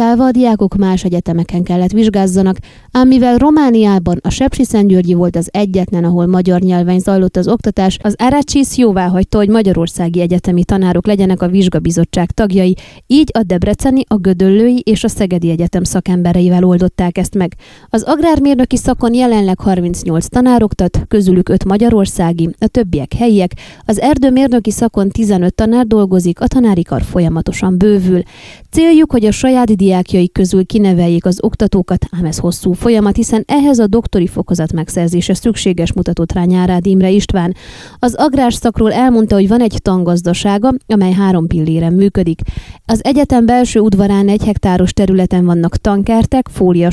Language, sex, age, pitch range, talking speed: Hungarian, female, 20-39, 180-230 Hz, 145 wpm